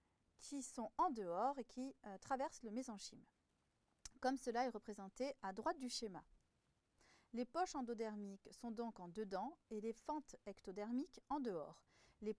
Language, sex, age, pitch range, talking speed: French, female, 40-59, 205-275 Hz, 155 wpm